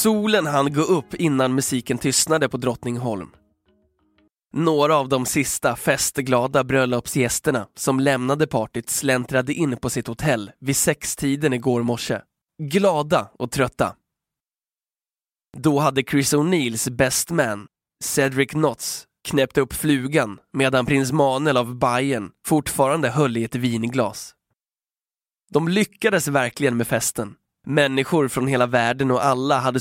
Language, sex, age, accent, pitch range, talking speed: Swedish, male, 20-39, native, 125-145 Hz, 125 wpm